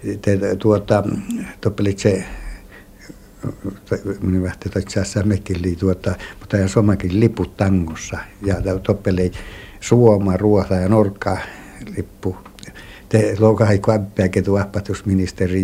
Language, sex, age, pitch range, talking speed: Finnish, male, 60-79, 95-105 Hz, 50 wpm